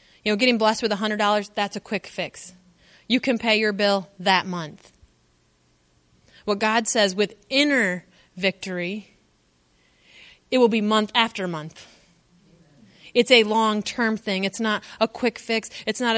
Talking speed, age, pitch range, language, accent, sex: 150 wpm, 30-49, 185-235 Hz, English, American, female